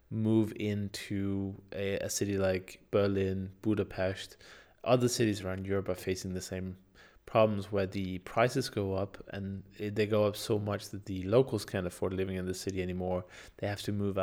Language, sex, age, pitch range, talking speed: English, male, 20-39, 95-110 Hz, 175 wpm